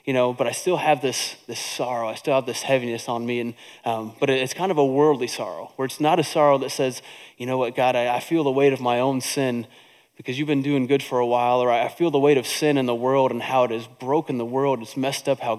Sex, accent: male, American